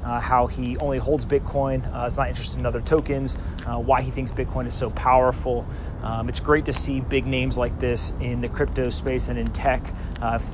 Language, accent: English, American